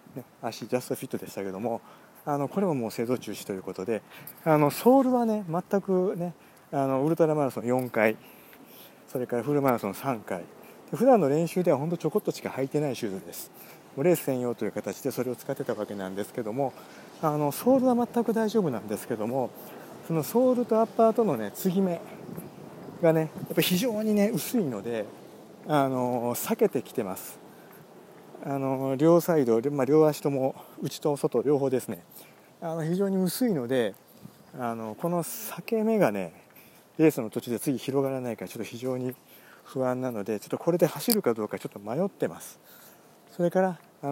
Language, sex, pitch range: Japanese, male, 120-175 Hz